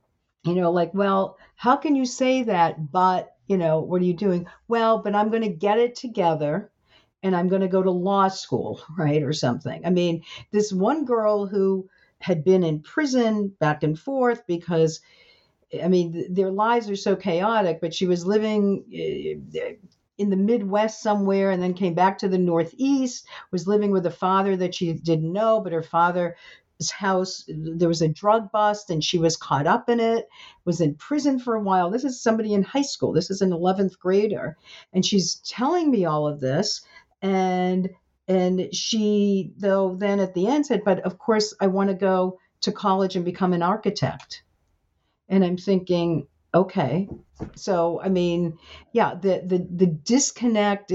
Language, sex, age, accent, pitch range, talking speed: English, female, 50-69, American, 175-210 Hz, 180 wpm